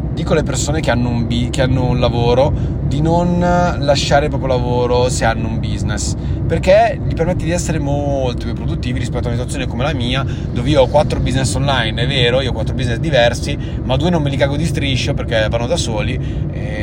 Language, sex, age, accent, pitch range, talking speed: Italian, male, 30-49, native, 120-140 Hz, 220 wpm